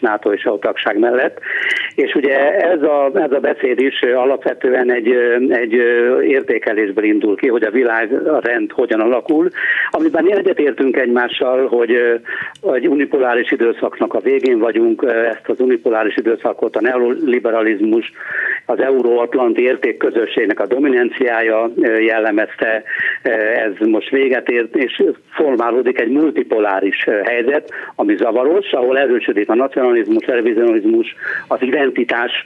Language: Hungarian